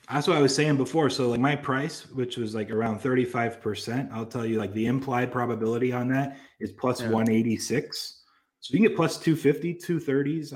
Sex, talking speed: male, 200 wpm